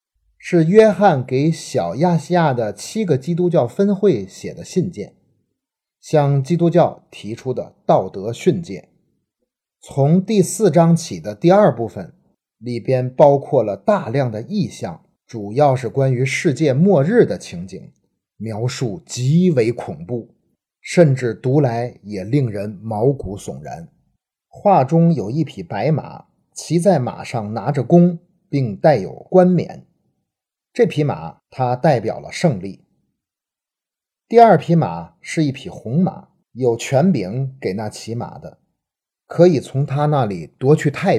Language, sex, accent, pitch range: Chinese, male, native, 125-175 Hz